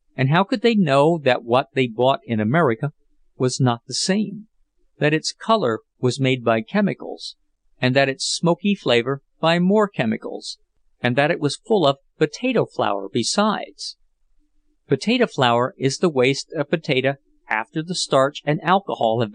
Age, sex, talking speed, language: 50-69, male, 160 wpm, English